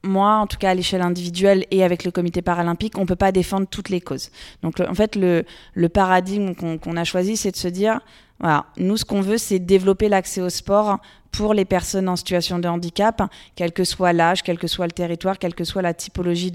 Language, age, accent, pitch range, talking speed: French, 20-39, French, 180-210 Hz, 235 wpm